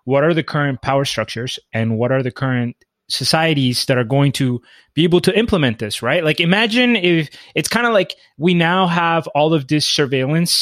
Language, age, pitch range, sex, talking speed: English, 20-39, 135-175 Hz, male, 205 wpm